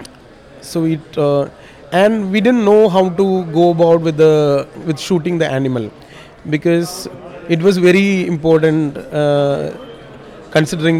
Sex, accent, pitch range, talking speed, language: male, native, 155-185 Hz, 130 wpm, Hindi